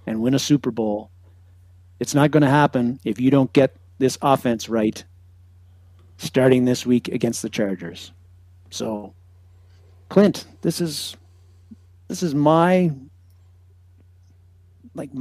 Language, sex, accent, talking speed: English, male, American, 120 wpm